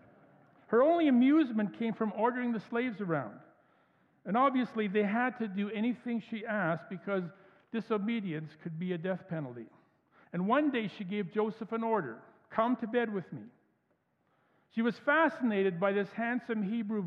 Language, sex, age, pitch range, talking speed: English, male, 50-69, 175-225 Hz, 160 wpm